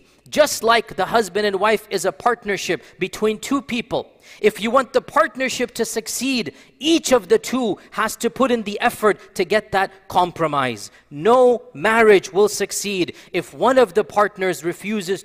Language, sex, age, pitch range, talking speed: English, male, 40-59, 185-230 Hz, 170 wpm